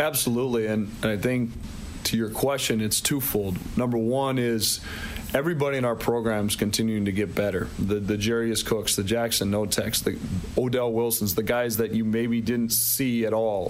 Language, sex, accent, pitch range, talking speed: English, male, American, 110-125 Hz, 170 wpm